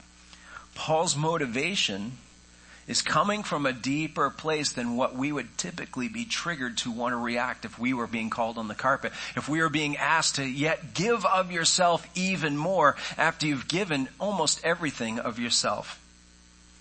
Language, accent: English, American